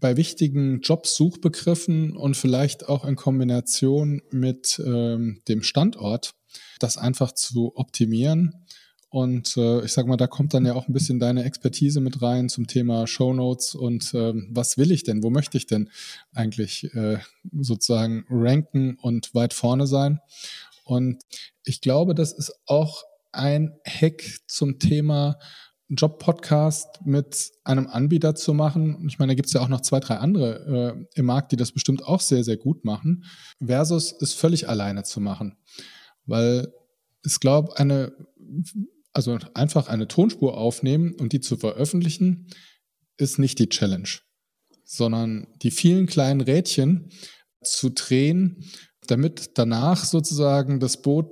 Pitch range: 120-155 Hz